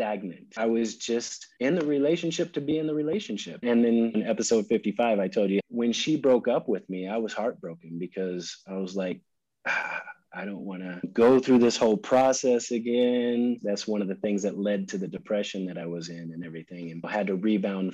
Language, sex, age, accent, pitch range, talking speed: English, male, 30-49, American, 95-115 Hz, 215 wpm